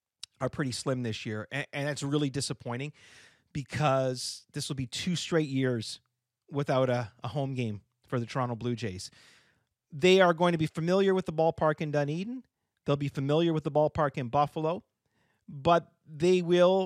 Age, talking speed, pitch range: 30-49, 175 wpm, 130-175 Hz